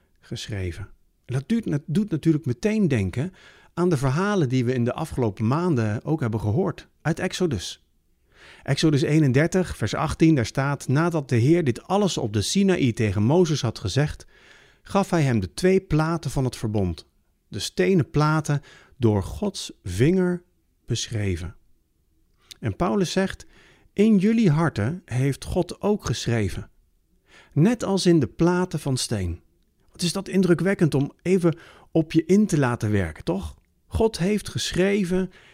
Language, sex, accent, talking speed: Dutch, male, Dutch, 145 wpm